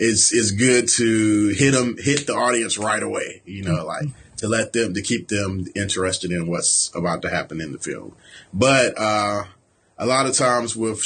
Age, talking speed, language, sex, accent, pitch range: 30-49, 195 wpm, English, male, American, 90-115 Hz